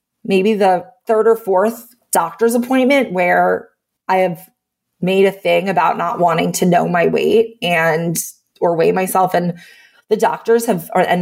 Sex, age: female, 30-49